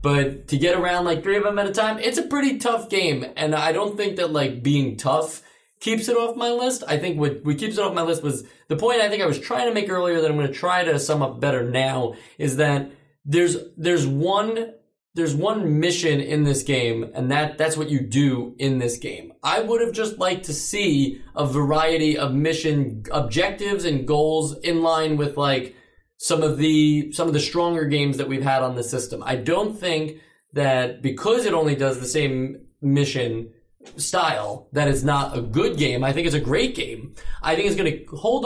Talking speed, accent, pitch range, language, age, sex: 220 wpm, American, 135-175 Hz, English, 20-39, male